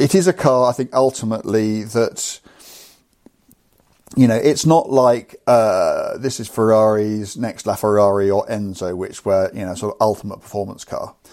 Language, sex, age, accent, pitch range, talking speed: English, male, 50-69, British, 100-130 Hz, 165 wpm